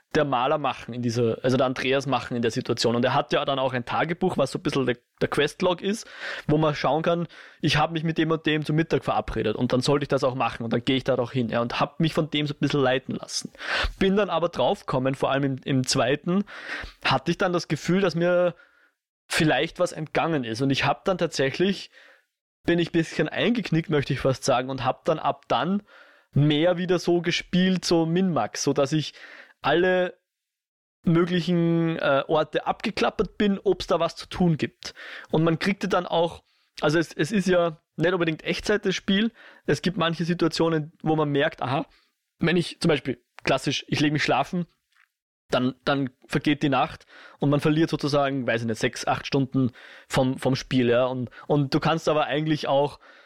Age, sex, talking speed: 20-39, male, 210 wpm